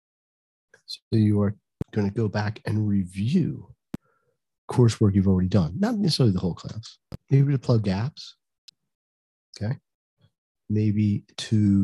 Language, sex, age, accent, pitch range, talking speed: English, male, 40-59, American, 100-135 Hz, 125 wpm